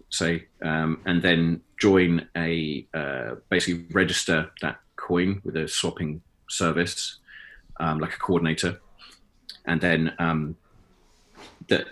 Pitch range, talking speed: 80-95 Hz, 115 wpm